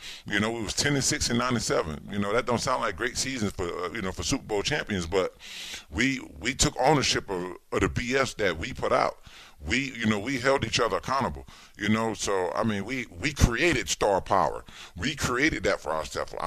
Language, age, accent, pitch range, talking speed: English, 40-59, American, 90-120 Hz, 225 wpm